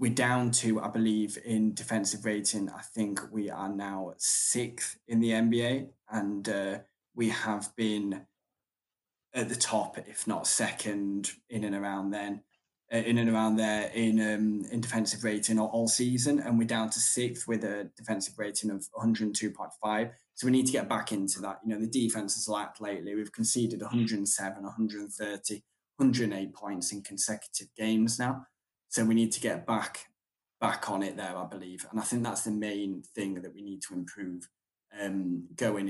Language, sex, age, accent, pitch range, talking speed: English, male, 10-29, British, 100-115 Hz, 180 wpm